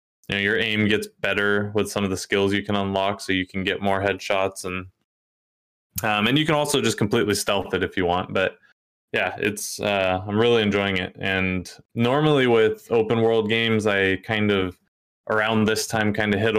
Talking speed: 205 wpm